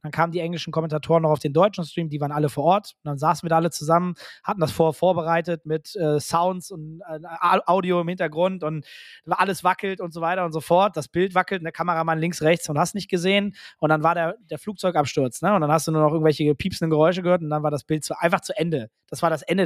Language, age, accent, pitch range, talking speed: German, 20-39, German, 150-170 Hz, 260 wpm